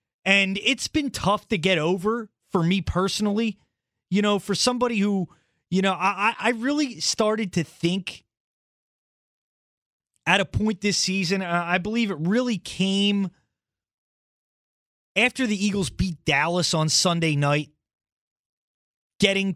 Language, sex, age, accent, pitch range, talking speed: English, male, 30-49, American, 170-205 Hz, 130 wpm